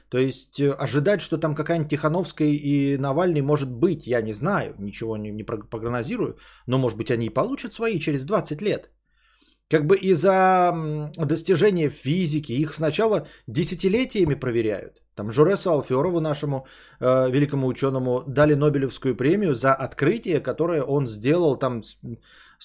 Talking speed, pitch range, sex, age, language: 140 wpm, 120-160 Hz, male, 20-39, Bulgarian